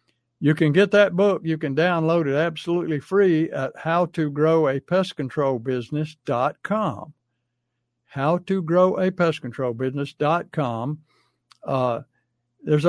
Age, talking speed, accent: 60-79, 75 wpm, American